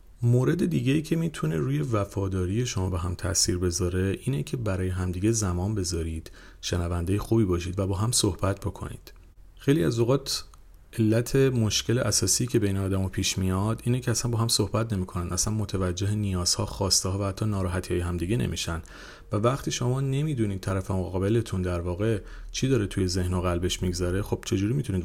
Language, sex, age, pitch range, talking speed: Persian, male, 40-59, 90-115 Hz, 180 wpm